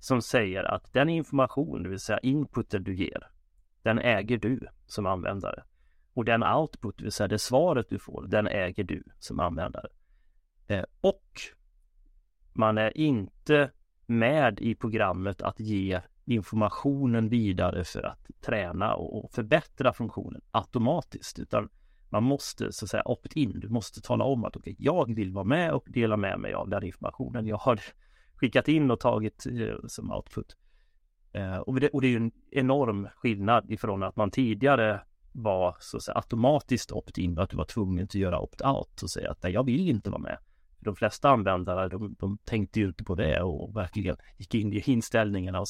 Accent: native